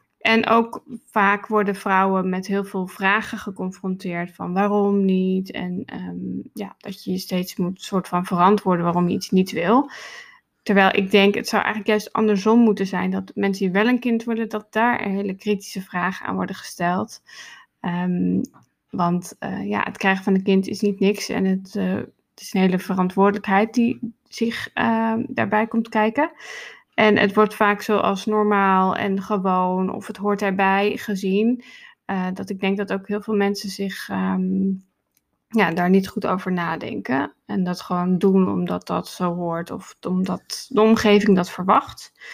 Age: 20-39